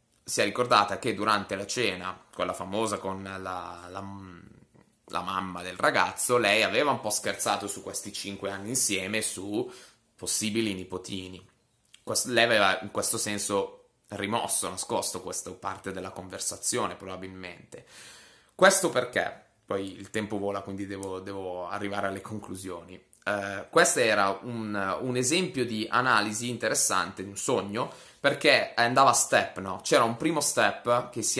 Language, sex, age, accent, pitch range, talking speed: Italian, male, 20-39, native, 95-120 Hz, 140 wpm